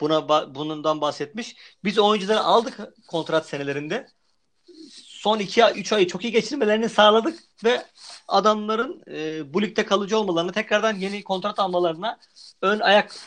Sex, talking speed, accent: male, 125 wpm, native